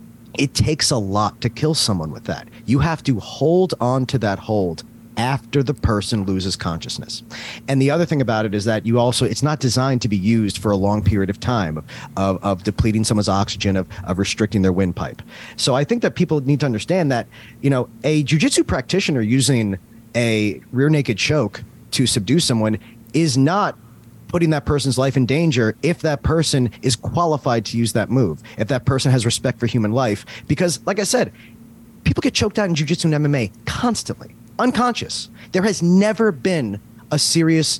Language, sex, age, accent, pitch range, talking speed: English, male, 30-49, American, 115-160 Hz, 190 wpm